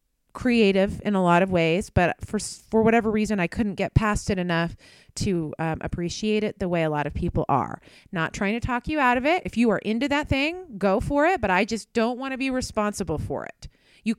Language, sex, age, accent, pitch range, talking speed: English, female, 30-49, American, 180-235 Hz, 235 wpm